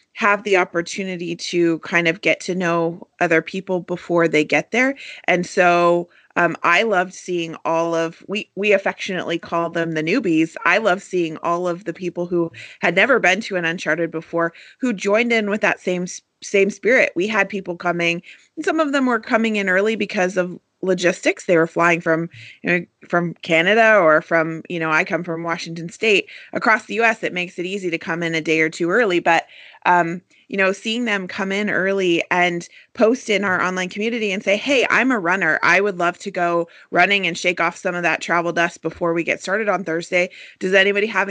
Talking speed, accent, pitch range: 210 wpm, American, 170-200 Hz